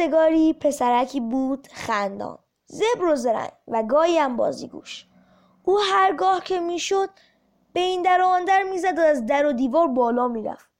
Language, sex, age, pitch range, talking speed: Persian, female, 20-39, 275-350 Hz, 155 wpm